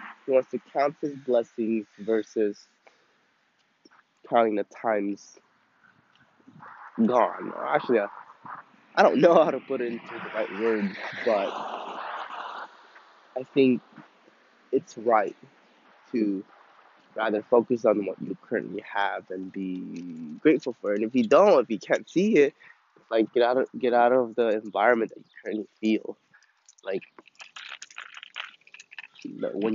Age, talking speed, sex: 20-39, 130 wpm, male